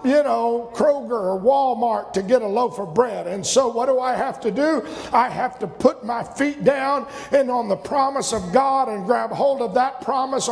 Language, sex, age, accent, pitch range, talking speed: English, male, 50-69, American, 190-270 Hz, 215 wpm